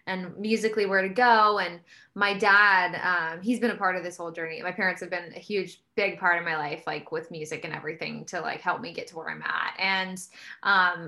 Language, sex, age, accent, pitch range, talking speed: English, female, 10-29, American, 180-225 Hz, 240 wpm